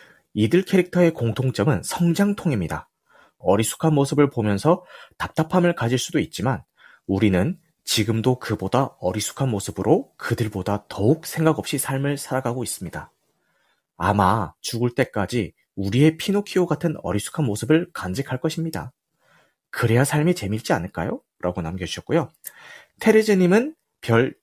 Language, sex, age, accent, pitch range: Korean, male, 30-49, native, 100-155 Hz